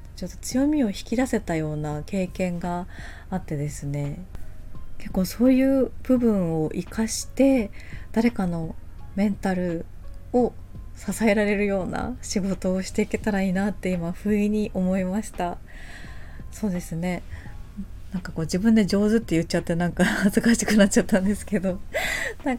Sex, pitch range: female, 165-230 Hz